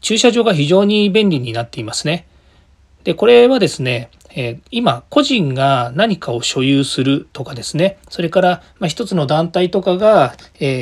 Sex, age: male, 40-59